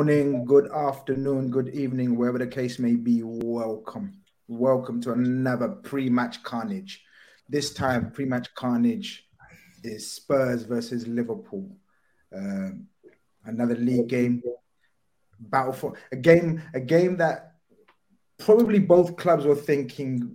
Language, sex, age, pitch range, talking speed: English, male, 30-49, 115-160 Hz, 120 wpm